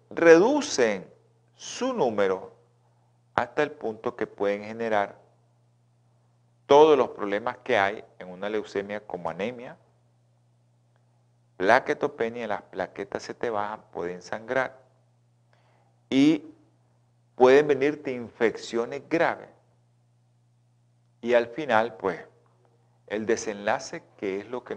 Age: 40-59